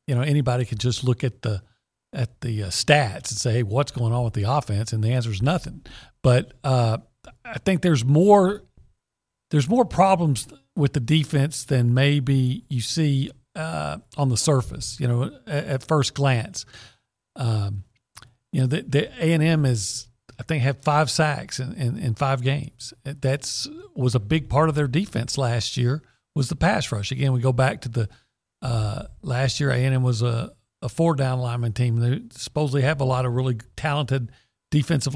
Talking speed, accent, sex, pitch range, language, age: 190 wpm, American, male, 120-150 Hz, English, 40-59